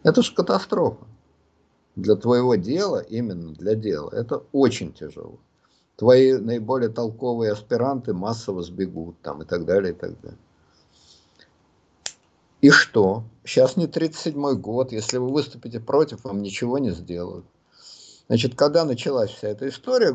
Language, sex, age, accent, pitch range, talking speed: Russian, male, 50-69, native, 100-160 Hz, 135 wpm